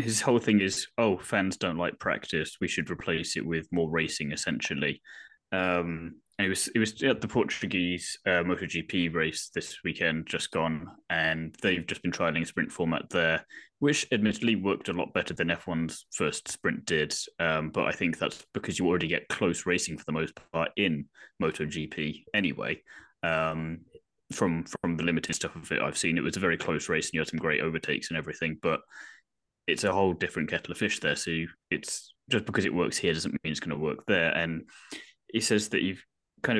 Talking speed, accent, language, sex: 200 wpm, British, English, male